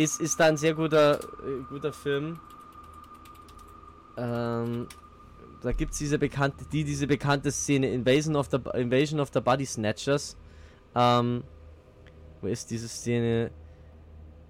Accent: German